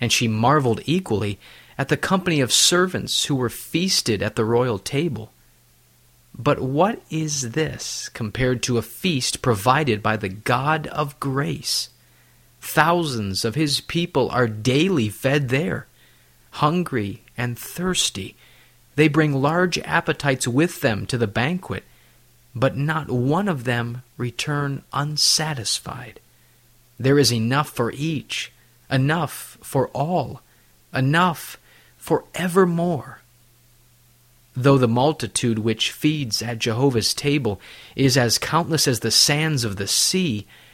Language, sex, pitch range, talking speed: English, male, 115-150 Hz, 125 wpm